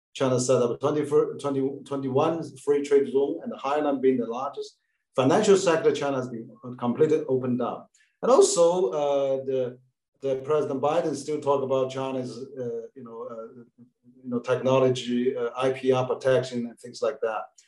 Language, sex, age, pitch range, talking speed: English, male, 50-69, 130-170 Hz, 165 wpm